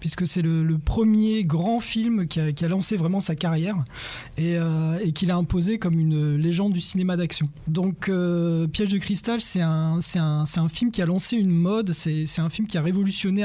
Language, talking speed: French, 230 wpm